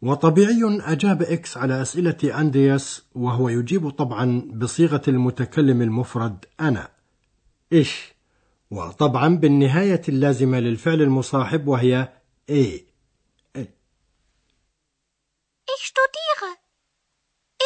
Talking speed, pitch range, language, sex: 80 wpm, 125-185 Hz, Arabic, male